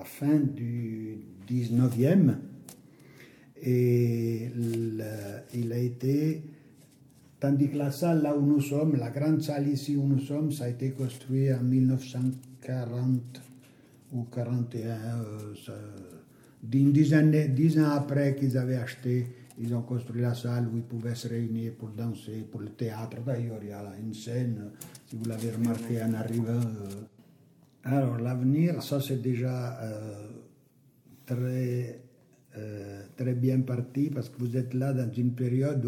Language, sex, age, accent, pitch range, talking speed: French, male, 60-79, Italian, 120-145 Hz, 145 wpm